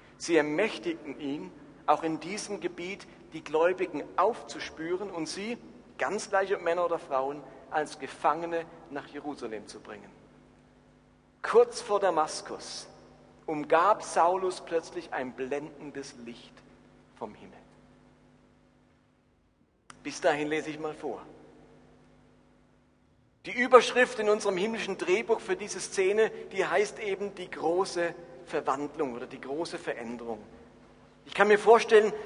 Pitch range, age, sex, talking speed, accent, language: 160-215 Hz, 50-69, male, 115 wpm, German, German